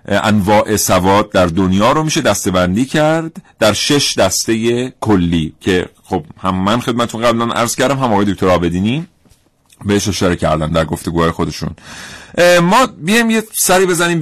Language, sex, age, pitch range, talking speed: Persian, male, 40-59, 95-135 Hz, 150 wpm